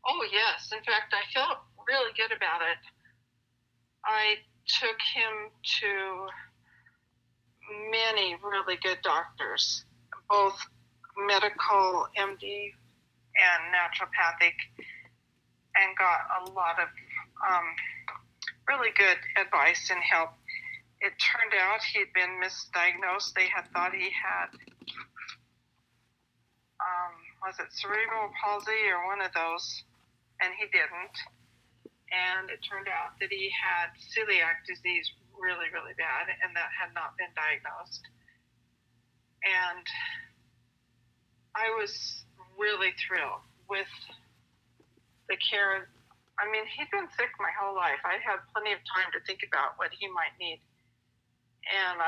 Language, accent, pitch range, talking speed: English, American, 170-210 Hz, 120 wpm